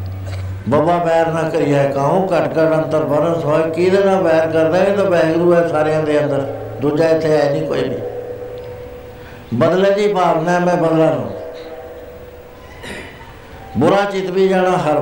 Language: Punjabi